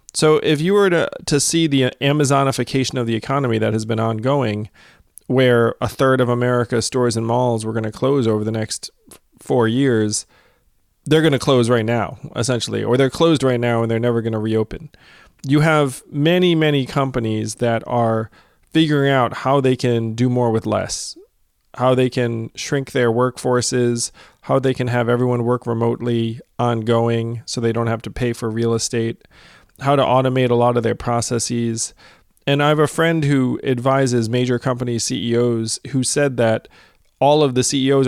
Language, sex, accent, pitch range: English, male, American, 115-135 Hz